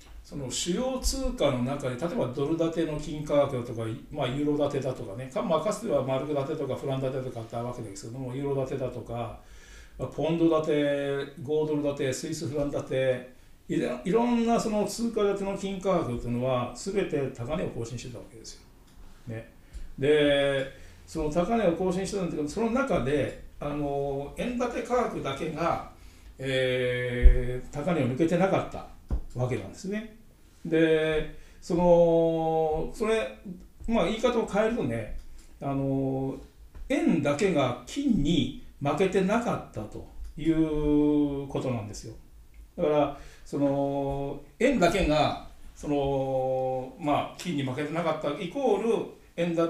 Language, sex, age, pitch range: Japanese, male, 60-79, 130-165 Hz